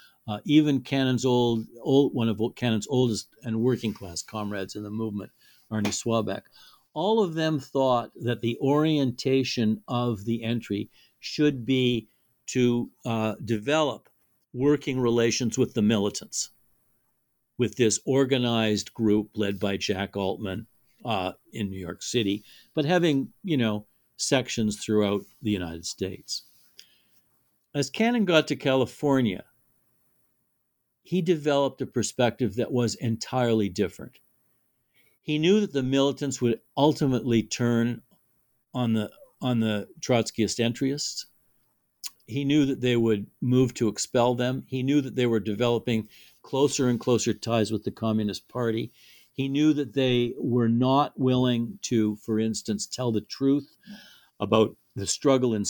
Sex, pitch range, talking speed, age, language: male, 110-135 Hz, 135 wpm, 60-79, English